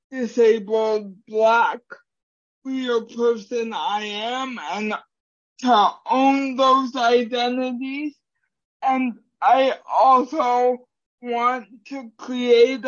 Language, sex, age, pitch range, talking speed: English, male, 60-79, 225-255 Hz, 80 wpm